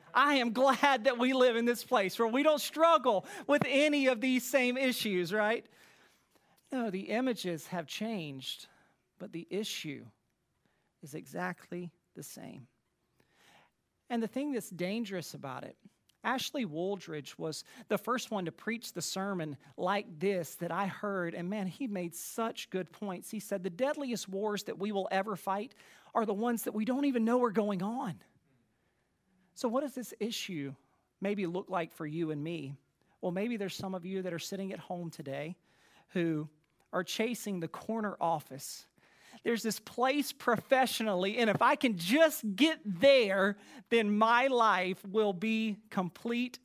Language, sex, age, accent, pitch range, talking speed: English, male, 40-59, American, 180-235 Hz, 165 wpm